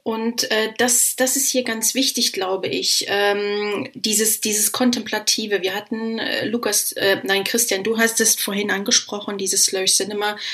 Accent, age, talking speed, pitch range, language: German, 30-49, 165 wpm, 205-250 Hz, German